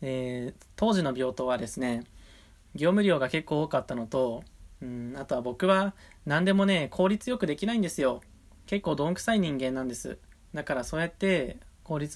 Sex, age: male, 20-39